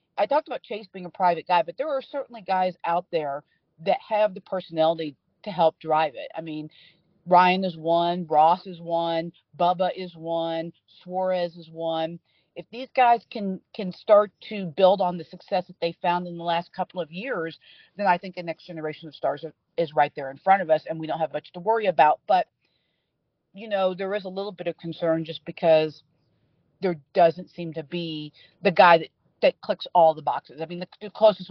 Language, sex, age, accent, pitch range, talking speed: English, female, 40-59, American, 160-185 Hz, 210 wpm